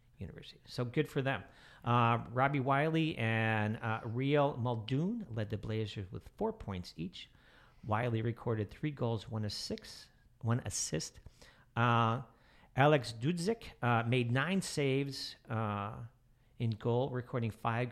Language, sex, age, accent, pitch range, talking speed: English, male, 50-69, American, 110-135 Hz, 135 wpm